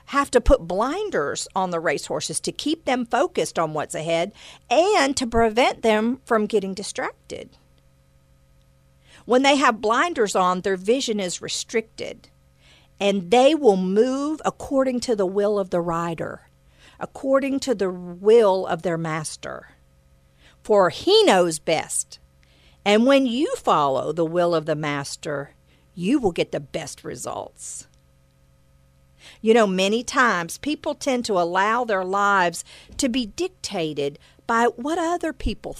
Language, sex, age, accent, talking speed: English, female, 50-69, American, 140 wpm